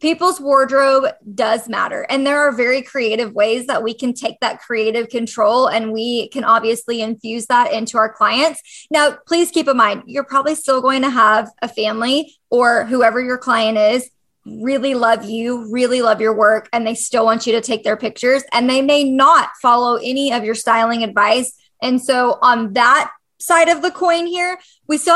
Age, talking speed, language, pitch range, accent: 20-39, 195 wpm, English, 225-275 Hz, American